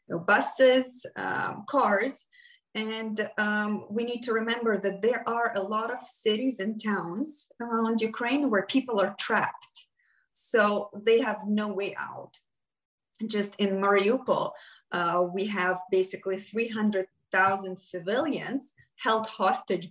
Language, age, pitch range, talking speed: English, 30-49, 195-235 Hz, 125 wpm